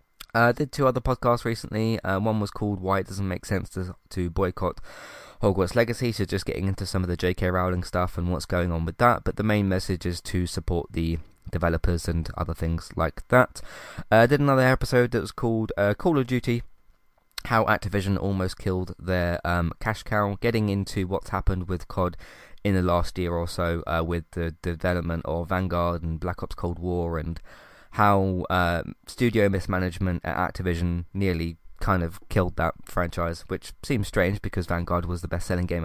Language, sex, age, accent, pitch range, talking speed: English, male, 20-39, British, 90-110 Hz, 190 wpm